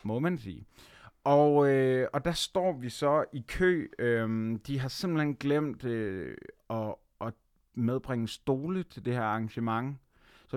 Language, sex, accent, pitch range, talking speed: Danish, male, native, 115-140 Hz, 155 wpm